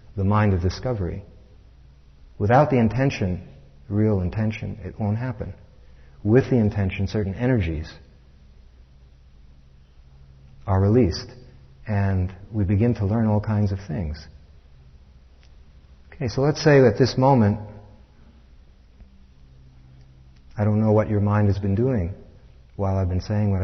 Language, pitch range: English, 70-105 Hz